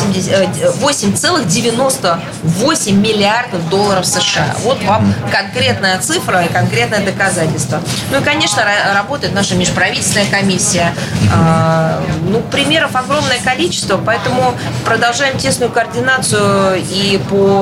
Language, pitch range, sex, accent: Russian, 175-205 Hz, female, native